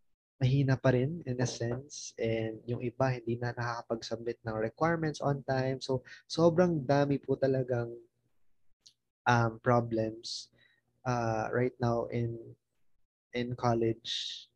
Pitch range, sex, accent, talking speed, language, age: 120-135 Hz, male, native, 120 wpm, Filipino, 20-39